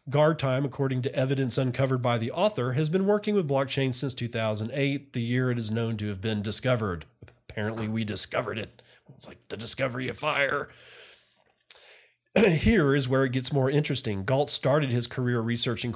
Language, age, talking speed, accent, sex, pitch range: English, 40-59, 175 wpm, American, male, 115-140 Hz